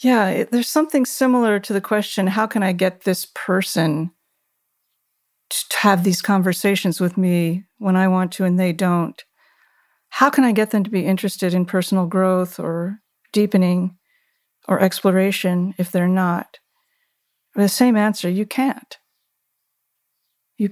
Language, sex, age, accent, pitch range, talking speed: English, female, 50-69, American, 185-235 Hz, 145 wpm